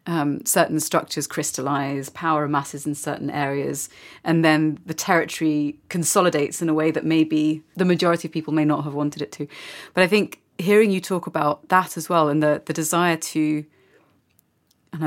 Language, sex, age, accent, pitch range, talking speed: English, female, 30-49, British, 155-180 Hz, 180 wpm